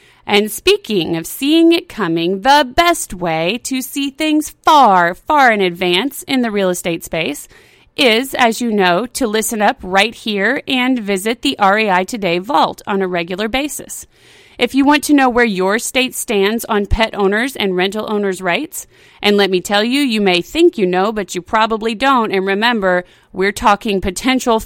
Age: 30-49